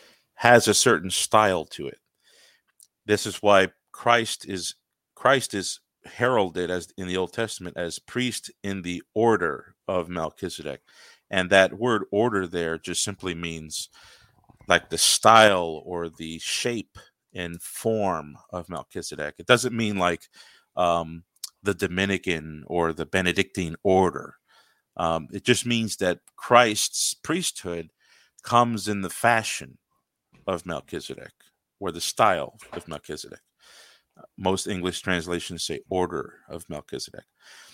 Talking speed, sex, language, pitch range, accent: 125 wpm, male, English, 85-105 Hz, American